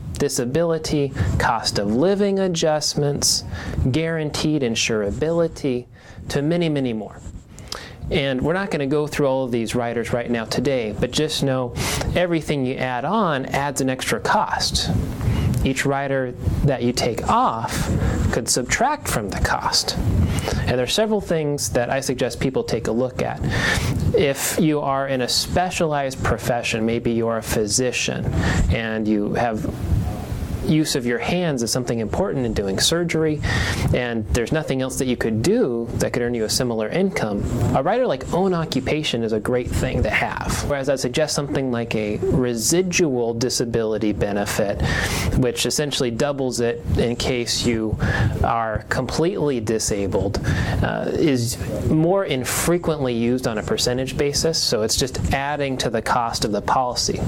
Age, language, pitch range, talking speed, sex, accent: 30-49, English, 115-150 Hz, 155 wpm, male, American